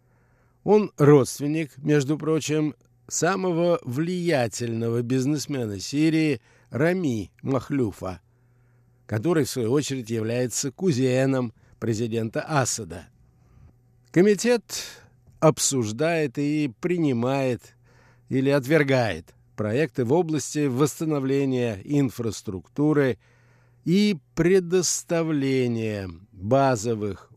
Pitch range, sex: 120-150 Hz, male